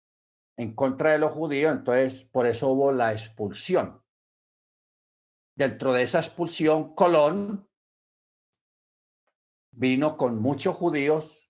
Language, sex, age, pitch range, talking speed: Spanish, male, 50-69, 115-150 Hz, 105 wpm